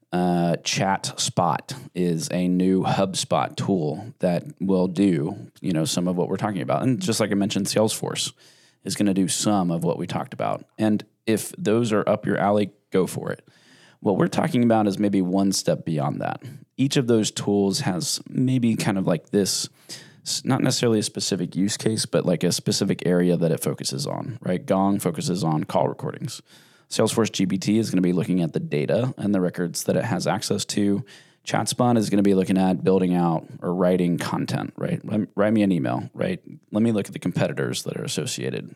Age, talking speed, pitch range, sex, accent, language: 20-39, 205 wpm, 90-110 Hz, male, American, English